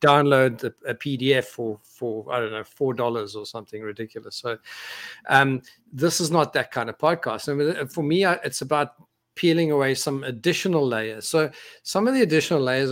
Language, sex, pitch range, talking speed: English, male, 125-150 Hz, 190 wpm